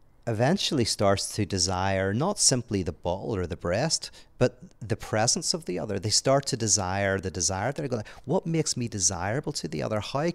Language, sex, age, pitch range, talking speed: English, male, 40-59, 95-120 Hz, 195 wpm